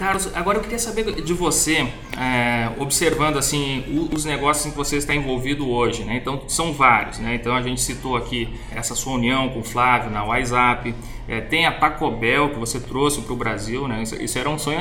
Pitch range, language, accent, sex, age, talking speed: 125-165 Hz, Portuguese, Brazilian, male, 20-39, 220 wpm